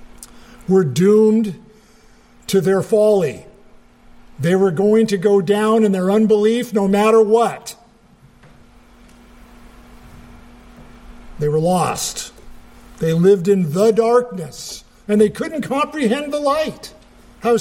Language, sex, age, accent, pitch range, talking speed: English, male, 50-69, American, 195-270 Hz, 110 wpm